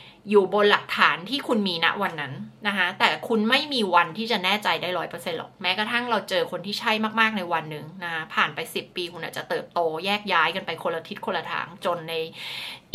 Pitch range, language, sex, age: 175-230 Hz, Thai, female, 20-39